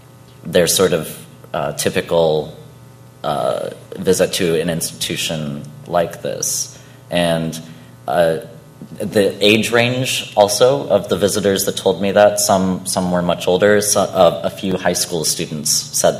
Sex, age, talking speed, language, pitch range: male, 30-49, 140 wpm, English, 80-105 Hz